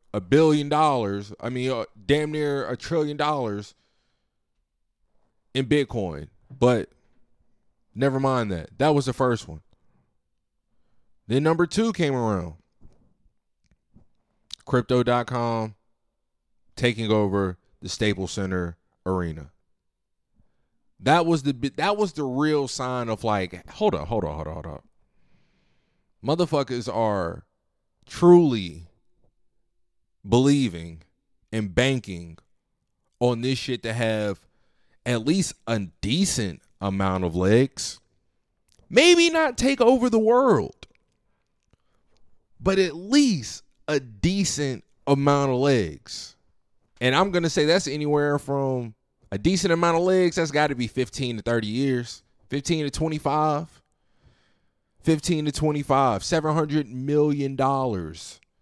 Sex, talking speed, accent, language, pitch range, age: male, 115 wpm, American, English, 105-150 Hz, 20-39